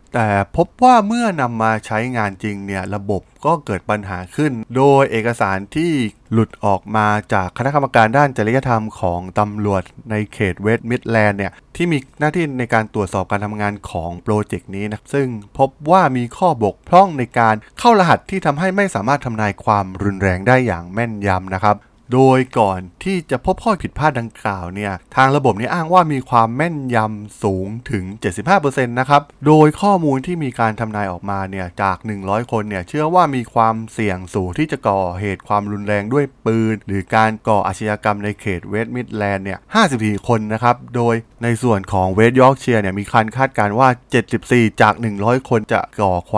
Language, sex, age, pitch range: Thai, male, 20-39, 100-130 Hz